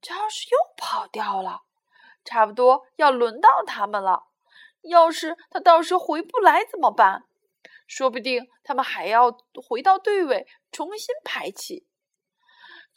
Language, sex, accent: Chinese, female, native